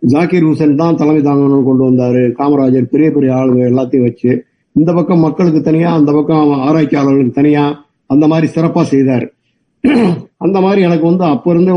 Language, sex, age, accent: Tamil, male, 50-69, native